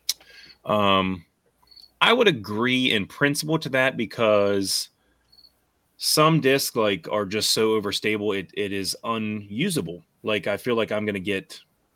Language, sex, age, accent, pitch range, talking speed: English, male, 30-49, American, 95-120 Hz, 140 wpm